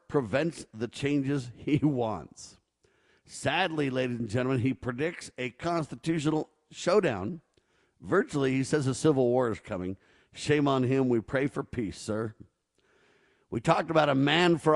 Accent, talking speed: American, 145 wpm